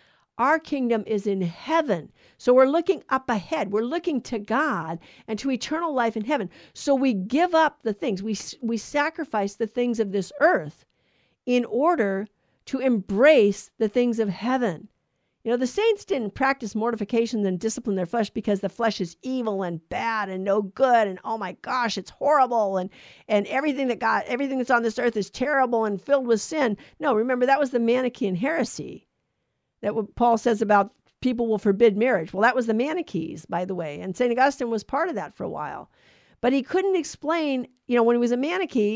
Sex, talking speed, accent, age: female, 200 wpm, American, 50-69